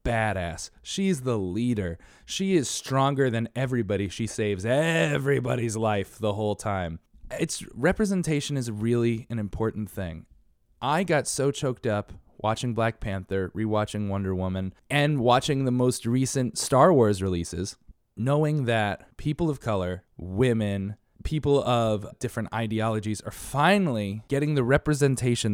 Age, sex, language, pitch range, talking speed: 20-39, male, English, 100-140 Hz, 135 wpm